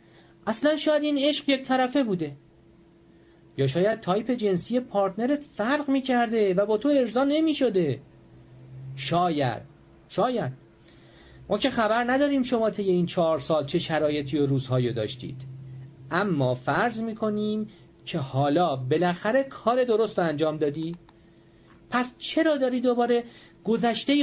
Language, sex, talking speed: English, male, 130 wpm